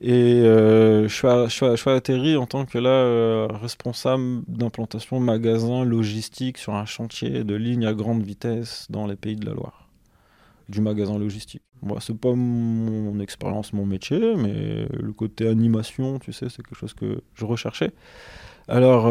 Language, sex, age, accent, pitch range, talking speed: French, male, 20-39, French, 105-115 Hz, 185 wpm